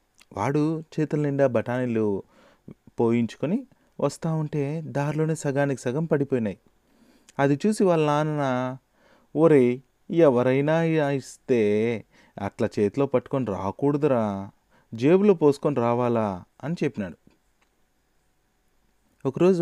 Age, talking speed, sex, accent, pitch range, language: 30-49, 85 wpm, male, native, 125-165 Hz, Telugu